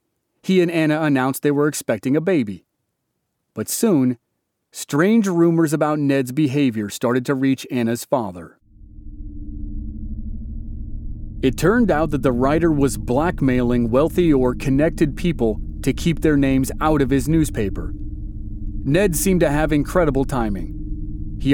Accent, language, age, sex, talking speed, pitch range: American, English, 40-59, male, 135 wpm, 105-155 Hz